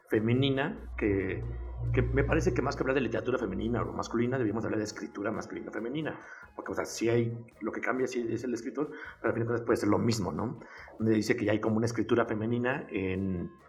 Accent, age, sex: Mexican, 50-69, male